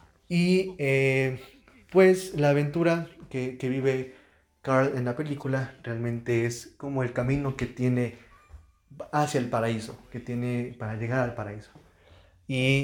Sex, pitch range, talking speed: male, 120-150 Hz, 135 wpm